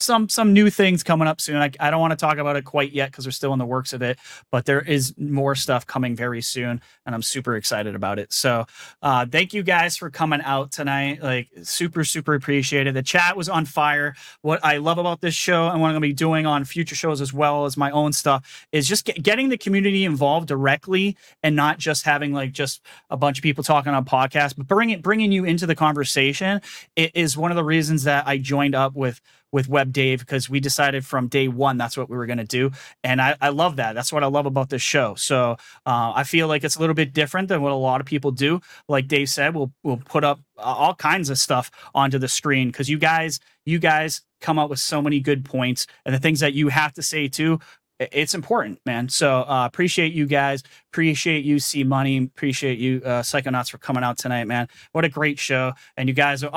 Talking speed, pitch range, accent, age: 245 wpm, 135-160 Hz, American, 30-49